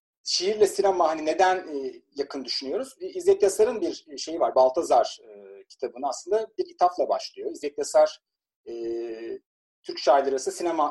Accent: native